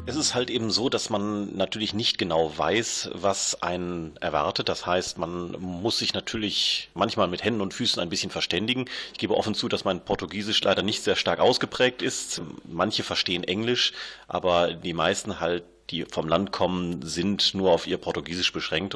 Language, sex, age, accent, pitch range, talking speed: German, male, 30-49, German, 90-105 Hz, 185 wpm